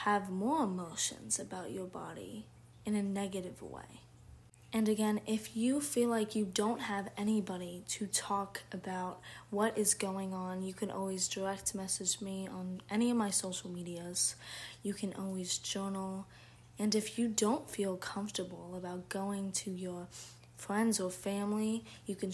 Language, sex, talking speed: English, female, 155 wpm